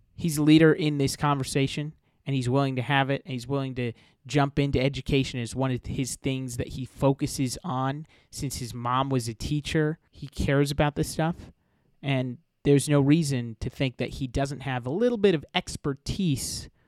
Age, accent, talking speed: 30-49, American, 190 wpm